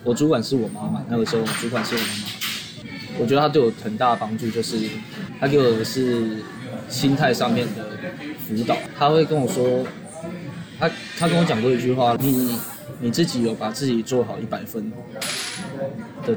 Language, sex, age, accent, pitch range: Chinese, male, 20-39, native, 115-135 Hz